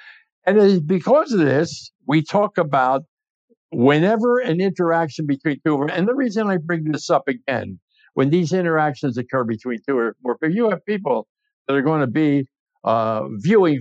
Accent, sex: American, male